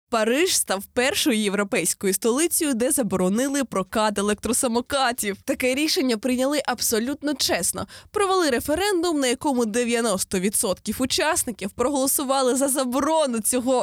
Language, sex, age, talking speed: Ukrainian, female, 20-39, 105 wpm